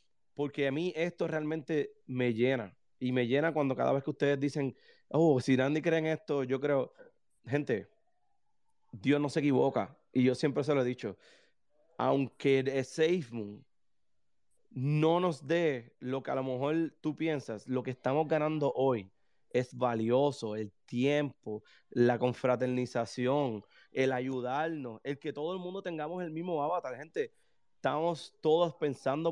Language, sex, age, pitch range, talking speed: Spanish, male, 30-49, 130-165 Hz, 155 wpm